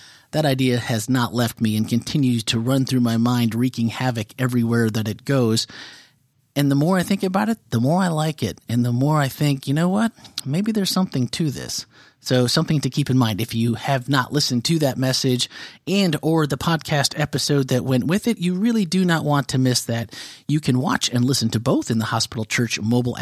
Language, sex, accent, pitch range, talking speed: English, male, American, 120-155 Hz, 225 wpm